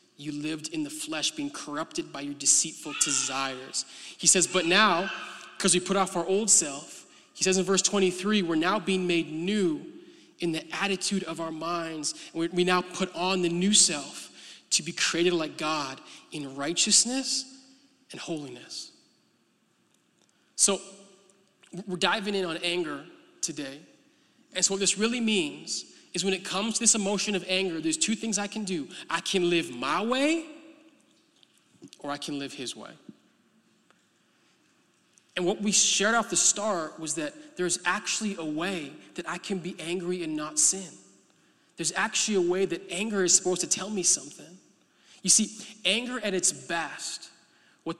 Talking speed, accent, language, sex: 165 wpm, American, English, male